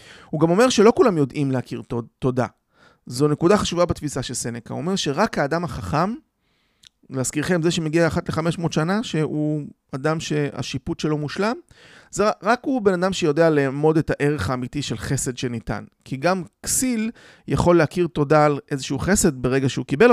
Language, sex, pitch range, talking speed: Hebrew, male, 135-175 Hz, 160 wpm